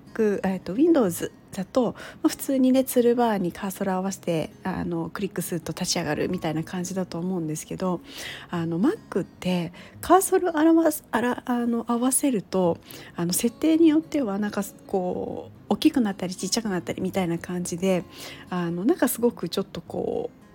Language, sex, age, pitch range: Japanese, female, 40-59, 180-250 Hz